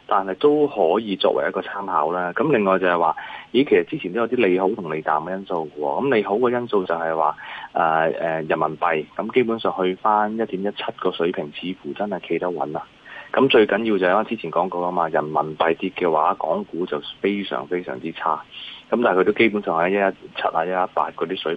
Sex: male